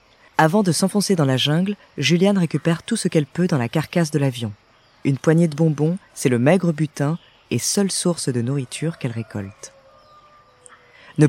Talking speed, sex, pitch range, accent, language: 175 wpm, female, 130-175 Hz, French, French